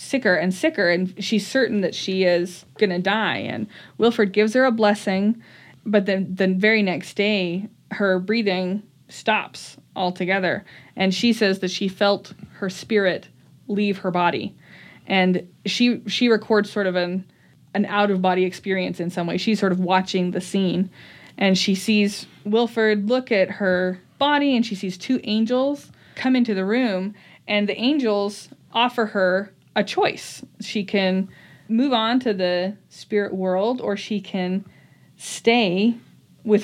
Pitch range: 185-215 Hz